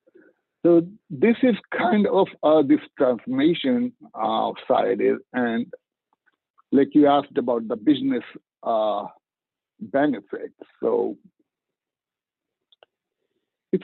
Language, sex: English, male